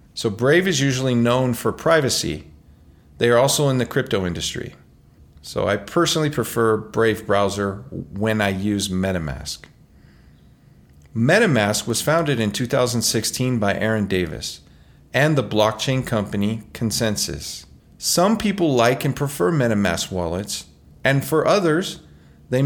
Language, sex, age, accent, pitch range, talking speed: English, male, 40-59, American, 100-140 Hz, 125 wpm